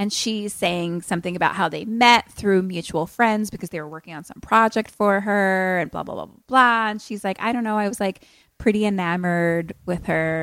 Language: English